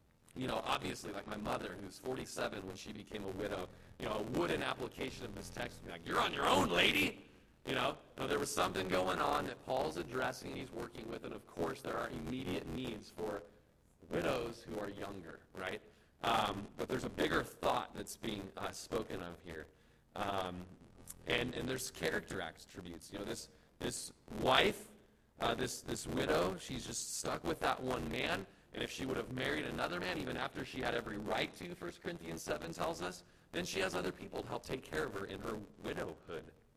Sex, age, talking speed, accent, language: male, 30-49, 200 wpm, American, English